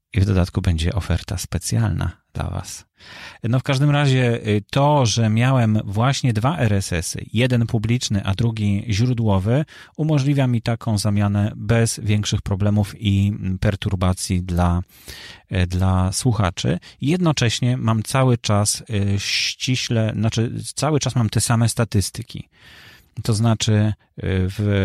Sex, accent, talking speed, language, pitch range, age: male, native, 120 wpm, Polish, 100-125 Hz, 30-49